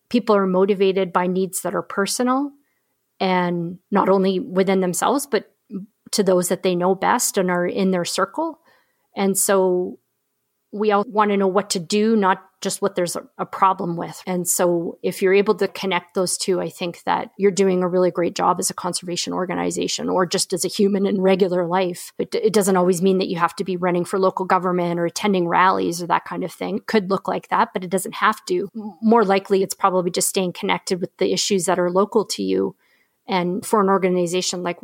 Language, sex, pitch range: English, female, 180-200 Hz